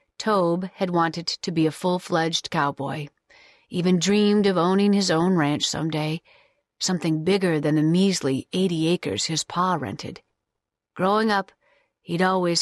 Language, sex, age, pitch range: English, female, 40-59, 160-200 Hz